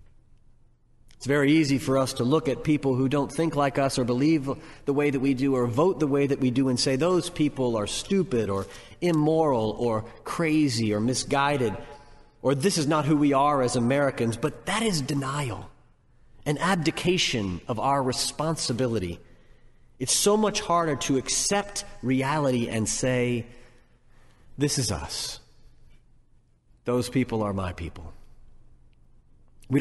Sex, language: male, English